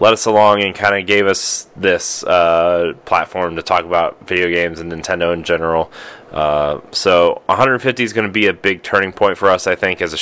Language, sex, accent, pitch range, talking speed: English, male, American, 85-105 Hz, 215 wpm